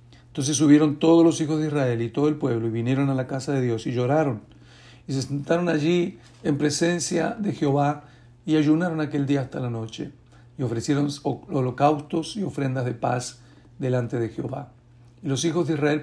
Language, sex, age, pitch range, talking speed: Spanish, male, 60-79, 120-140 Hz, 185 wpm